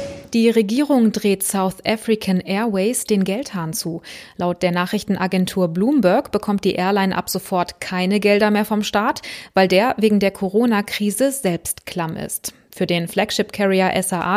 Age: 20-39